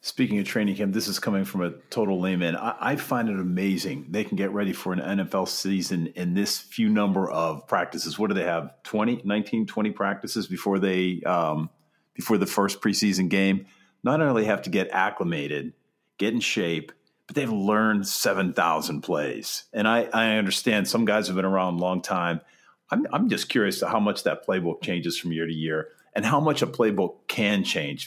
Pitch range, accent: 90-100 Hz, American